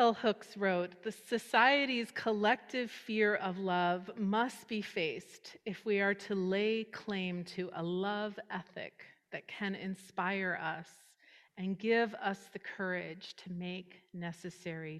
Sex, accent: female, American